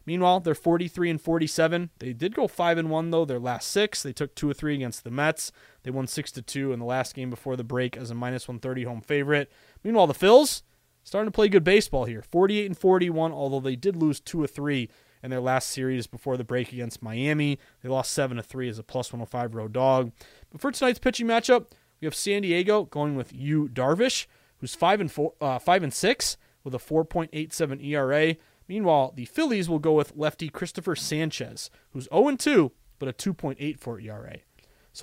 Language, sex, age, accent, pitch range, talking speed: English, male, 20-39, American, 130-180 Hz, 190 wpm